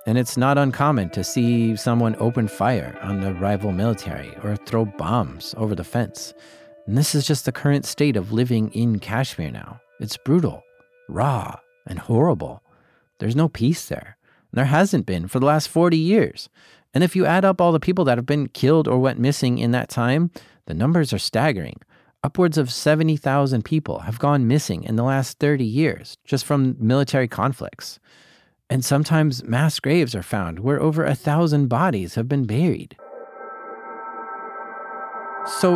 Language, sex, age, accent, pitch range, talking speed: English, male, 40-59, American, 115-155 Hz, 170 wpm